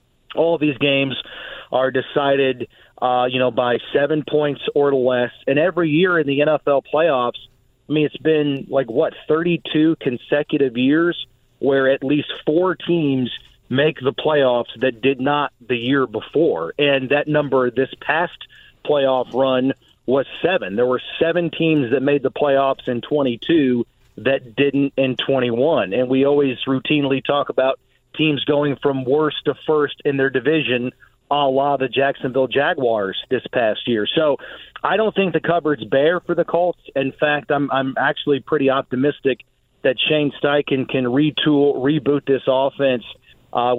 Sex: male